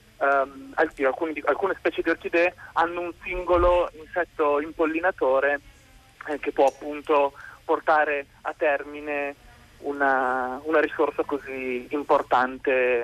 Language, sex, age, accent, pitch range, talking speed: Italian, male, 30-49, native, 145-175 Hz, 105 wpm